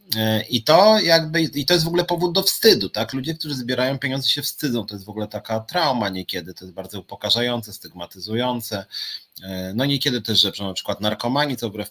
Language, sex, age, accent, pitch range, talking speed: Polish, male, 30-49, native, 105-150 Hz, 195 wpm